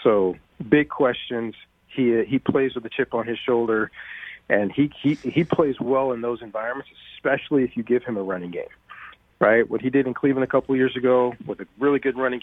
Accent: American